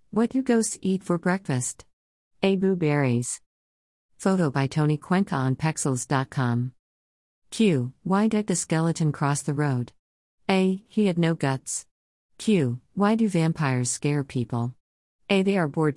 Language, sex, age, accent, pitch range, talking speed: English, female, 50-69, American, 125-190 Hz, 145 wpm